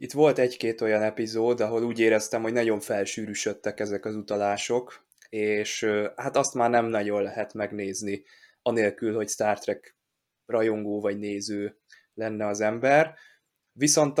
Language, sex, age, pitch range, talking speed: Hungarian, male, 20-39, 105-115 Hz, 140 wpm